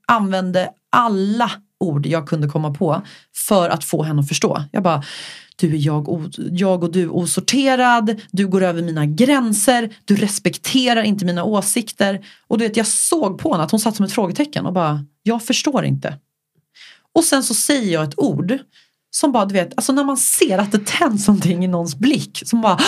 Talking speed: 190 wpm